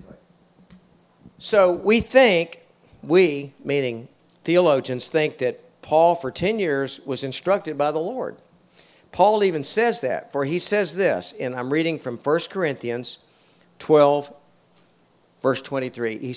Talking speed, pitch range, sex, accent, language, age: 125 wpm, 125-170 Hz, male, American, English, 50-69